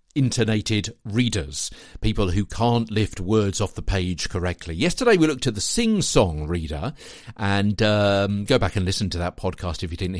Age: 50-69